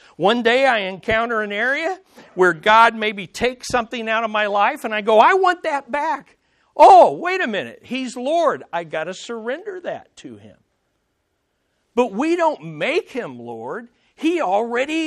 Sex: male